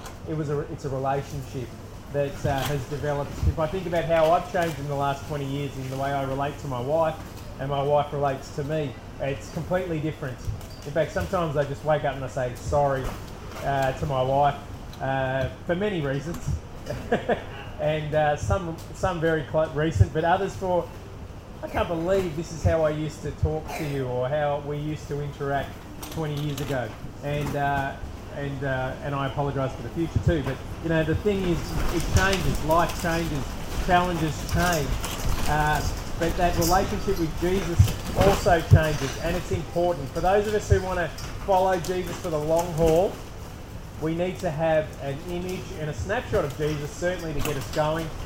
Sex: male